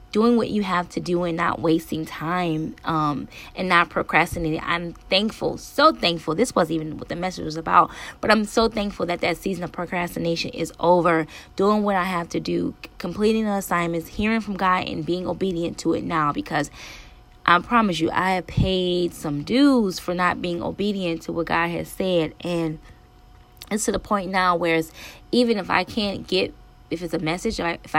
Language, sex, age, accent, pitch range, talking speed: English, female, 20-39, American, 165-195 Hz, 195 wpm